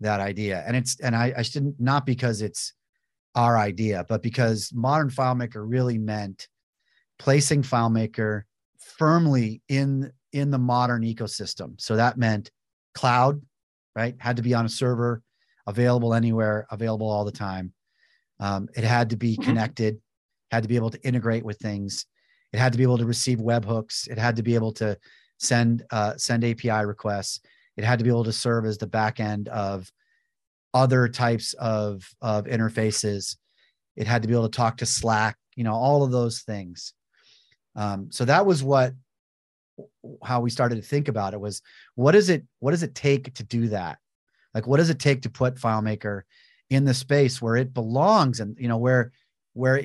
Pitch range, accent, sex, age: 110-130 Hz, American, male, 30-49